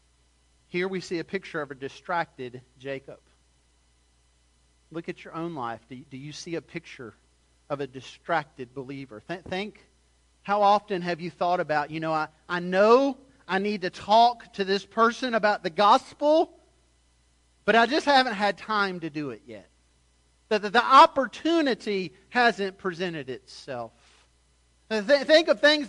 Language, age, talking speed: English, 40-59, 155 wpm